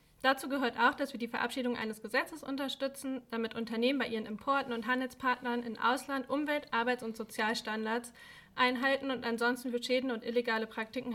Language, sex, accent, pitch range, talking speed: German, female, German, 230-270 Hz, 165 wpm